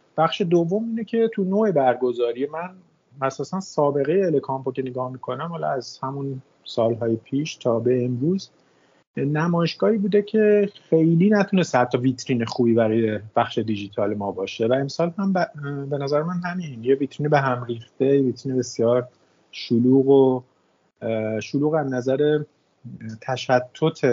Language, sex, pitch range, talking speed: Persian, male, 115-150 Hz, 140 wpm